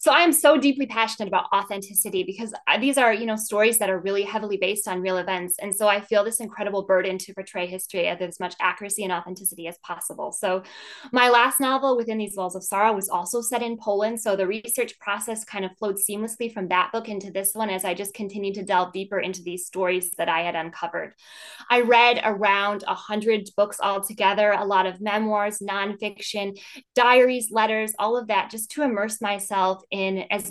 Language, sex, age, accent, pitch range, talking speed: English, female, 10-29, American, 190-220 Hz, 205 wpm